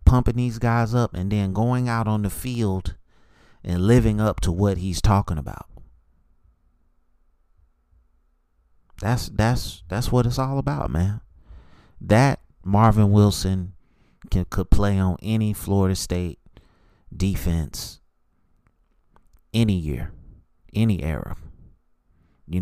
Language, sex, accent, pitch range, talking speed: English, male, American, 80-105 Hz, 115 wpm